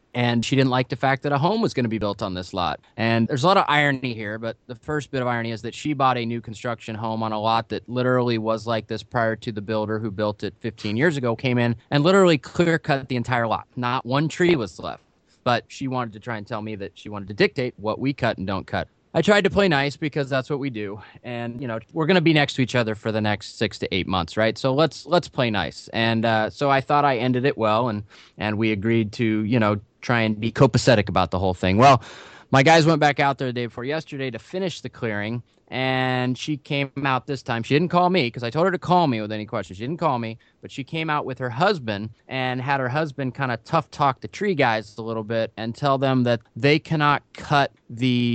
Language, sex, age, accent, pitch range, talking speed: English, male, 20-39, American, 110-140 Hz, 265 wpm